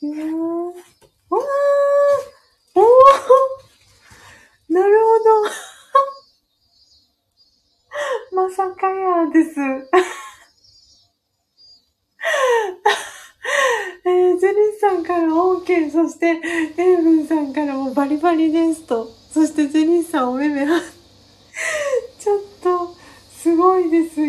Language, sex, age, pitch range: Japanese, female, 30-49, 245-345 Hz